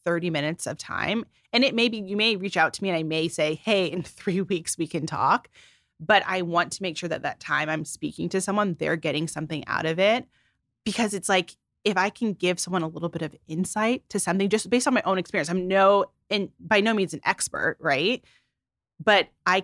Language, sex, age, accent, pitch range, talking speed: English, female, 30-49, American, 160-195 Hz, 230 wpm